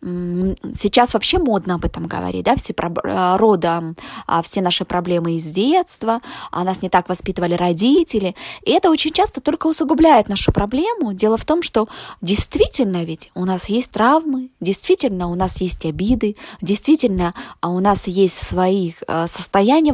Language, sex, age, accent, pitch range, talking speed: Russian, female, 20-39, native, 180-240 Hz, 150 wpm